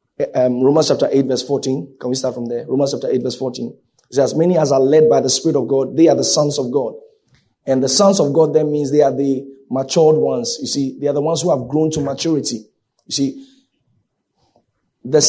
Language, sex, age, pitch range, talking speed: English, male, 30-49, 140-170 Hz, 230 wpm